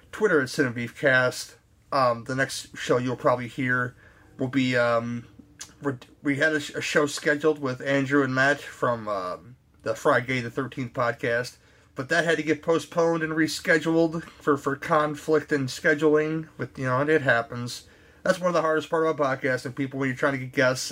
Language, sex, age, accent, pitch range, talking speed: English, male, 30-49, American, 125-150 Hz, 190 wpm